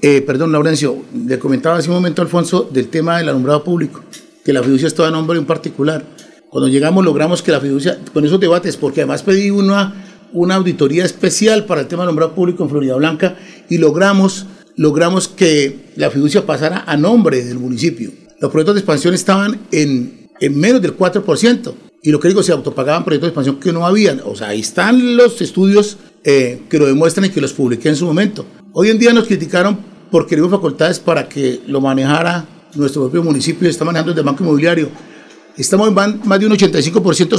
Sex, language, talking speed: male, Spanish, 200 wpm